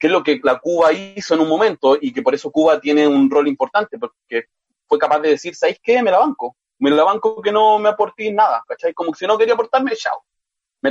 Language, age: Spanish, 30-49